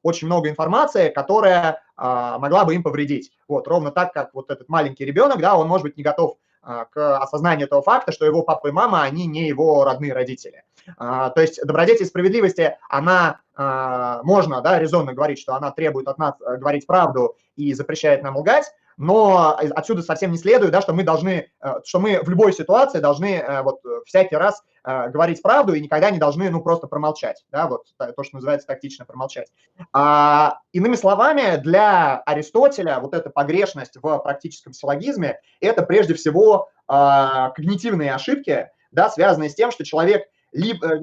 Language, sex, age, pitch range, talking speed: Russian, male, 20-39, 140-180 Hz, 170 wpm